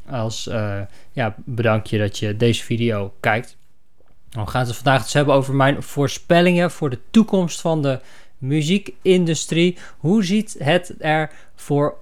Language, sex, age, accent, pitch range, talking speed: Dutch, male, 20-39, Dutch, 120-155 Hz, 155 wpm